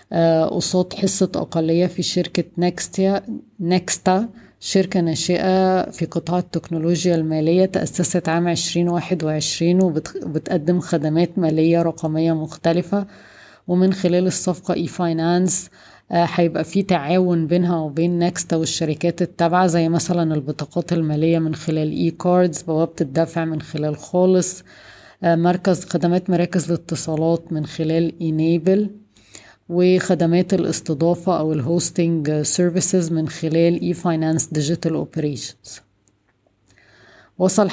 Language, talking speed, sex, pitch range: Arabic, 100 wpm, female, 160-180 Hz